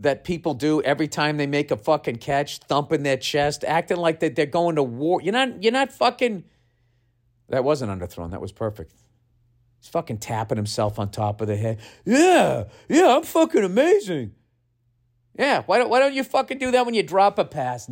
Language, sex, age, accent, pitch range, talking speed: English, male, 50-69, American, 120-160 Hz, 200 wpm